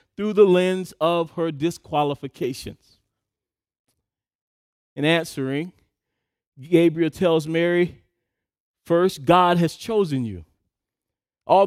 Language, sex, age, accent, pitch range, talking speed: English, male, 40-59, American, 165-205 Hz, 85 wpm